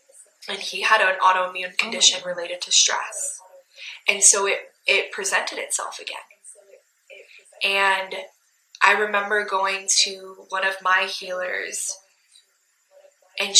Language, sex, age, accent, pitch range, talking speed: English, female, 20-39, American, 185-205 Hz, 115 wpm